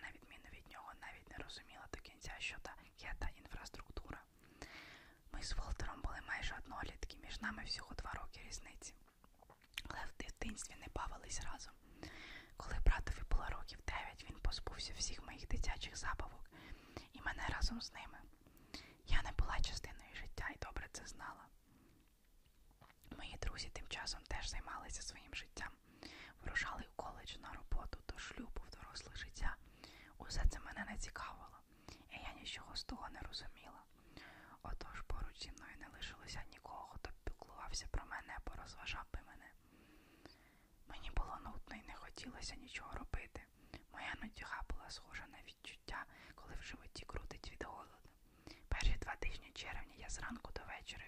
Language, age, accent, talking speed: Ukrainian, 20-39, native, 145 wpm